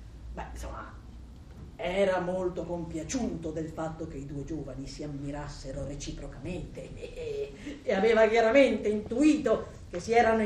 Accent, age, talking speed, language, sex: native, 40-59, 120 wpm, Italian, female